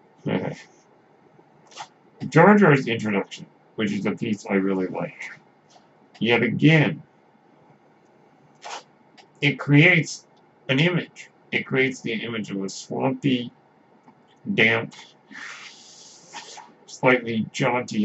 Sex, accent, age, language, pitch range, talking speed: male, American, 60-79, English, 100-135 Hz, 85 wpm